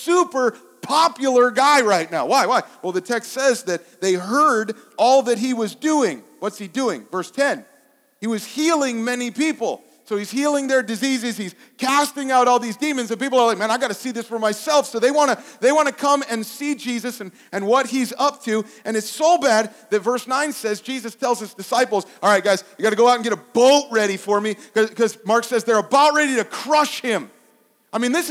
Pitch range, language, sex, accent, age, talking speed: 190-260 Hz, English, male, American, 40-59, 225 wpm